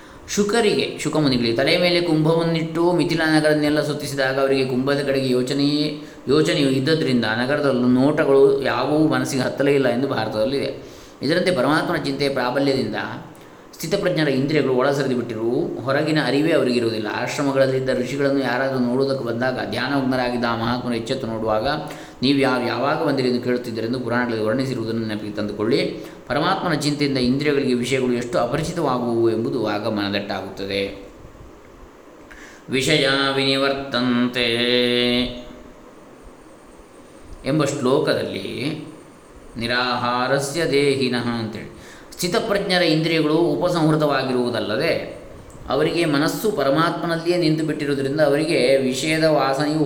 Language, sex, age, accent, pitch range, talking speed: Kannada, male, 20-39, native, 125-150 Hz, 95 wpm